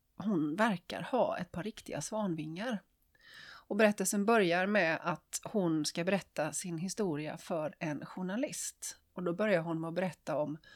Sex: female